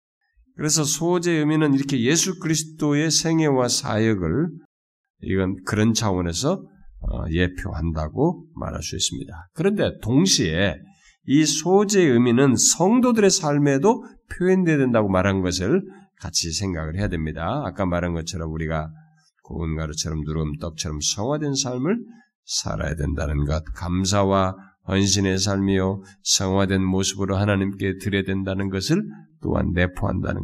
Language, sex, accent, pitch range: Korean, male, native, 90-130 Hz